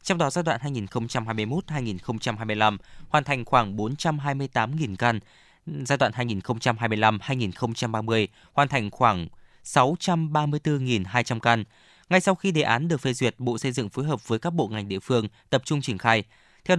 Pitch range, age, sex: 115-150 Hz, 20-39, male